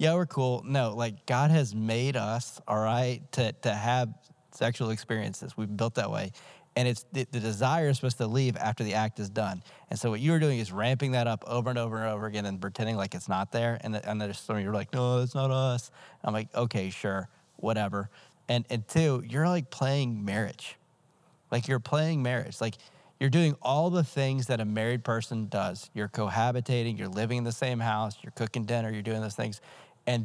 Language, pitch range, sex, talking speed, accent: English, 110-135 Hz, male, 220 wpm, American